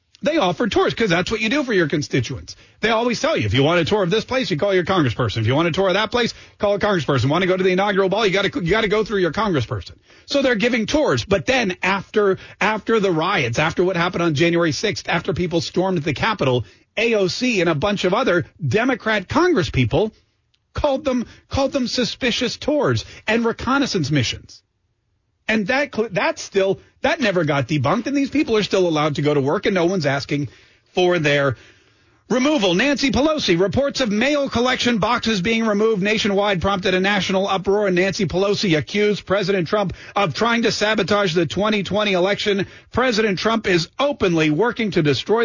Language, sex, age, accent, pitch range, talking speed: English, male, 40-59, American, 160-220 Hz, 200 wpm